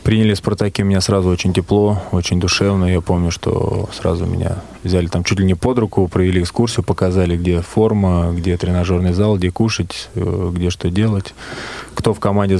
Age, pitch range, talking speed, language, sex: 20-39, 90-105 Hz, 170 wpm, Russian, male